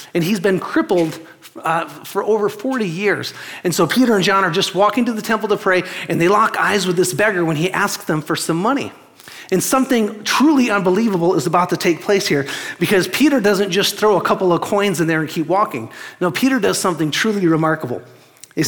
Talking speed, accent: 215 wpm, American